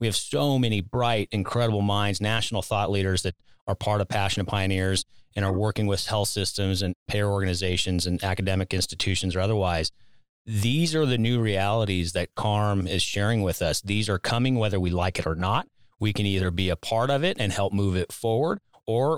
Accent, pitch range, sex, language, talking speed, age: American, 100-120 Hz, male, English, 200 wpm, 30-49